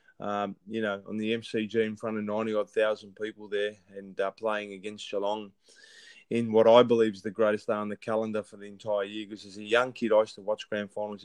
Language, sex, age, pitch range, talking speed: English, male, 20-39, 105-115 Hz, 235 wpm